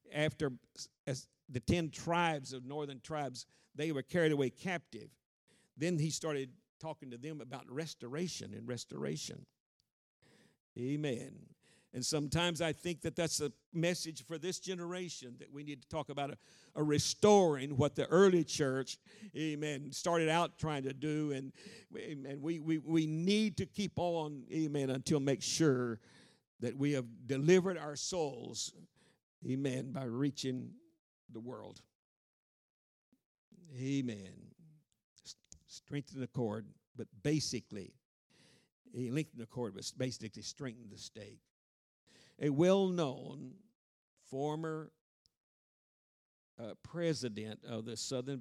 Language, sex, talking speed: English, male, 125 wpm